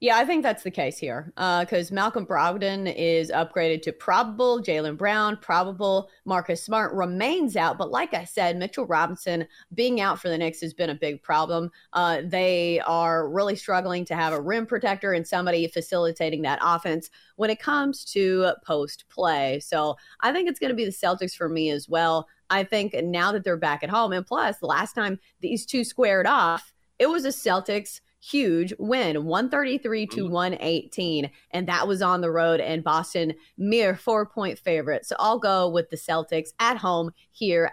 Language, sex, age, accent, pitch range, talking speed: English, female, 30-49, American, 165-225 Hz, 190 wpm